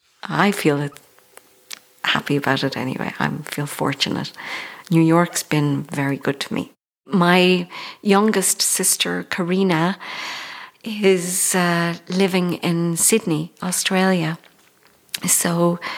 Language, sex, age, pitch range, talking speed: English, female, 50-69, 165-210 Hz, 100 wpm